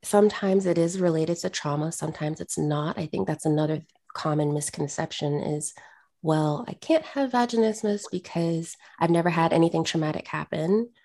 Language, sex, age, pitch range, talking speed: English, female, 20-39, 150-190 Hz, 160 wpm